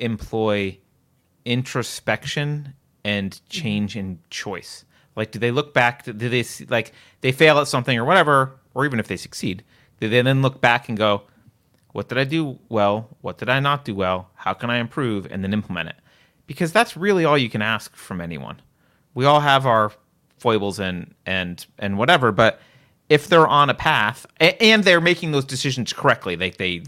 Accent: American